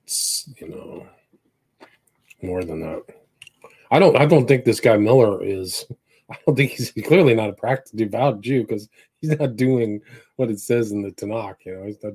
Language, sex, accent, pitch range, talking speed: English, male, American, 105-135 Hz, 190 wpm